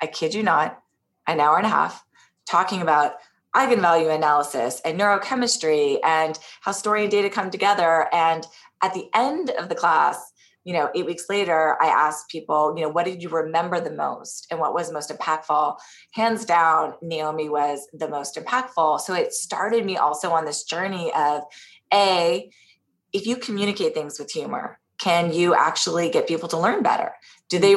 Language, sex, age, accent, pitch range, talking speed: English, female, 20-39, American, 160-200 Hz, 180 wpm